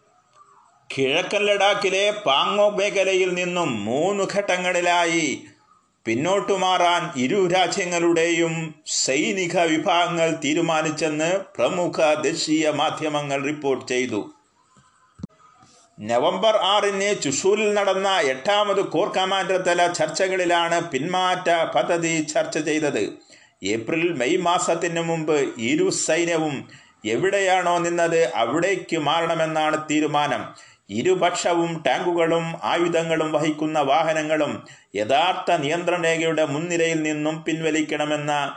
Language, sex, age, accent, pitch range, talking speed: Malayalam, male, 30-49, native, 150-185 Hz, 85 wpm